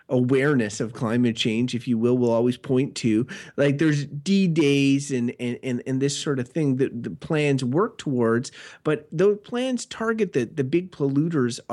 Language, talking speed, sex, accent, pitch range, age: English, 175 wpm, male, American, 130-160 Hz, 30-49